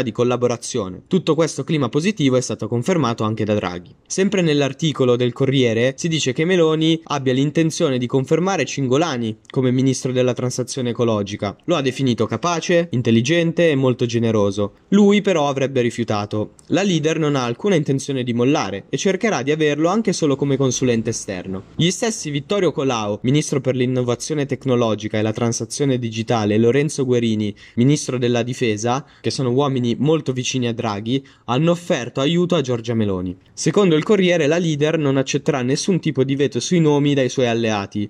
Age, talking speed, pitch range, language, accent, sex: 20-39, 165 wpm, 120-155 Hz, Italian, native, male